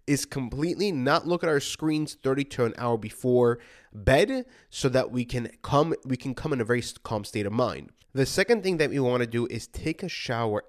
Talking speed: 225 wpm